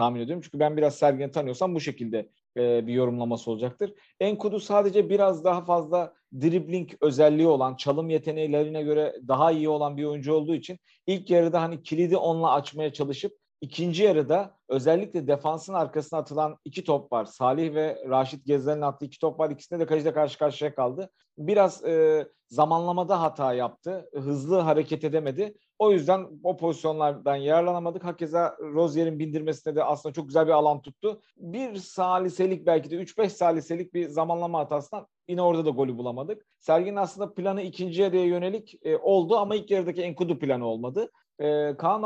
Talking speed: 165 wpm